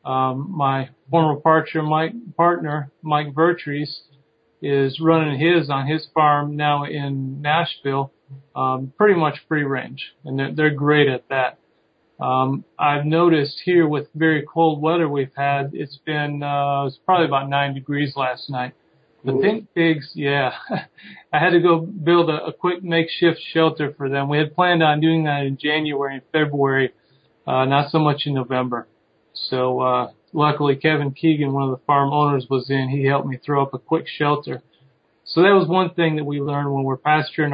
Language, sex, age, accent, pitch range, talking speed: English, male, 40-59, American, 140-160 Hz, 175 wpm